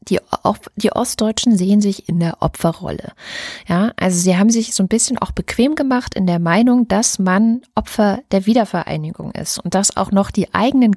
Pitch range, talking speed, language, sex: 175-220 Hz, 180 wpm, German, female